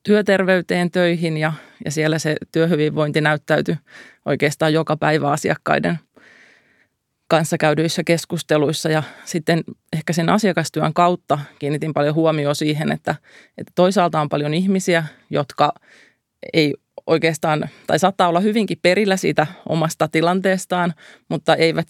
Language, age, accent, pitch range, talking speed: Finnish, 30-49, native, 150-175 Hz, 120 wpm